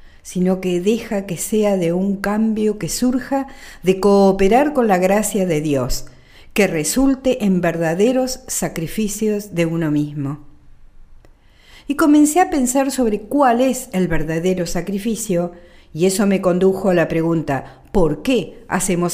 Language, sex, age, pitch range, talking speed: Spanish, female, 50-69, 170-240 Hz, 140 wpm